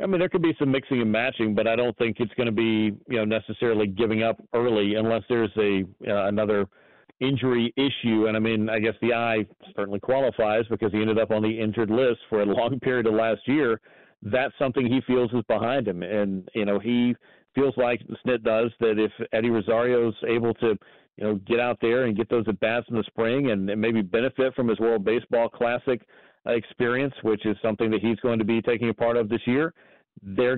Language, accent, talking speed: English, American, 220 wpm